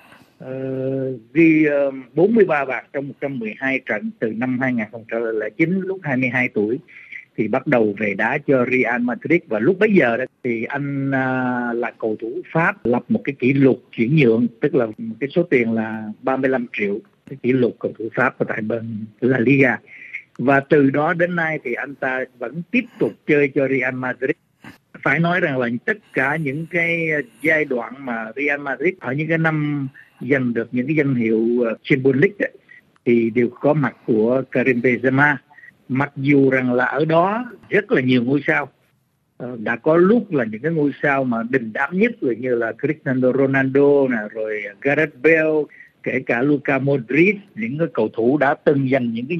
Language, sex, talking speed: Vietnamese, male, 185 wpm